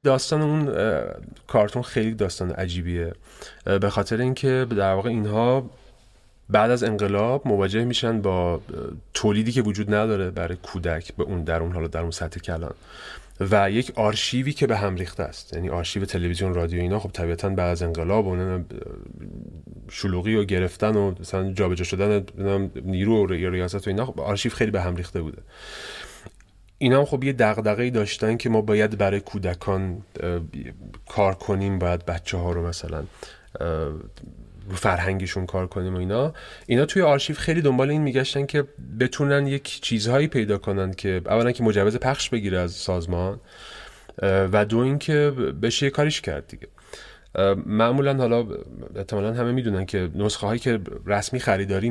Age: 30-49